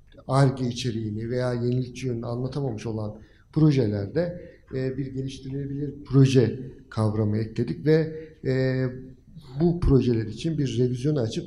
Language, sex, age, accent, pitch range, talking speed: Turkish, male, 50-69, native, 110-140 Hz, 100 wpm